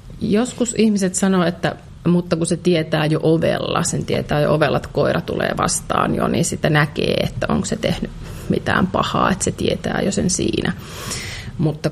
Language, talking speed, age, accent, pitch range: Finnish, 175 wpm, 30-49, native, 155-190 Hz